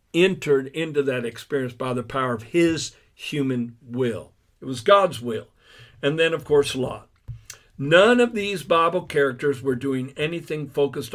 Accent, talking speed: American, 155 wpm